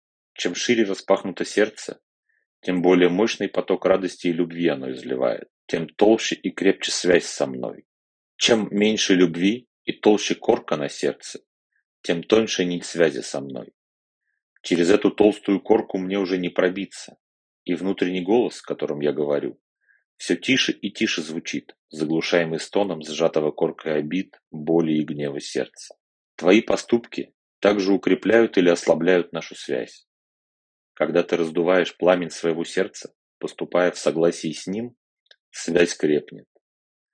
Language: Russian